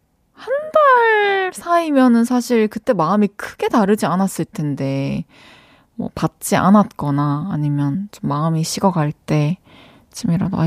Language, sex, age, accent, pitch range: Korean, female, 20-39, native, 175-255 Hz